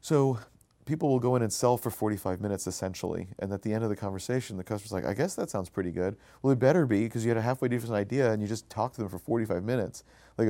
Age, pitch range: 40-59, 95-120 Hz